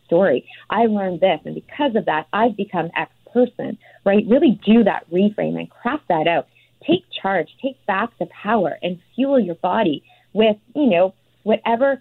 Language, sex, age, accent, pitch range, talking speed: English, female, 30-49, American, 175-225 Hz, 175 wpm